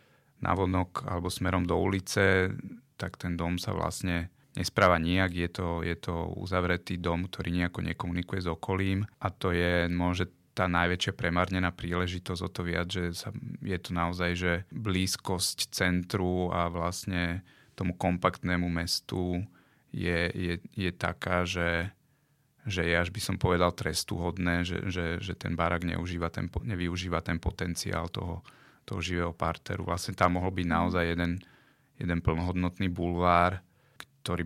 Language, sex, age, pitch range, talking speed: Slovak, male, 30-49, 85-95 Hz, 145 wpm